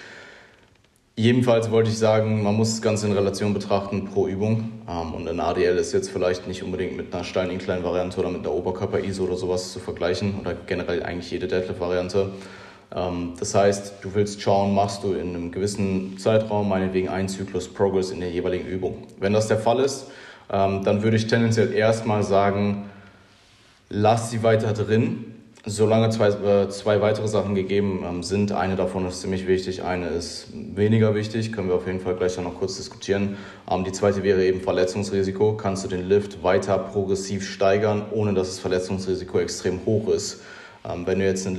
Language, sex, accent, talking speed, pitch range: German, male, German, 180 wpm, 95-105 Hz